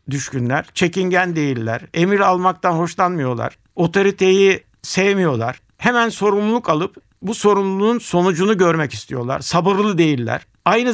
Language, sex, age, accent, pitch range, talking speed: Turkish, male, 60-79, native, 145-195 Hz, 105 wpm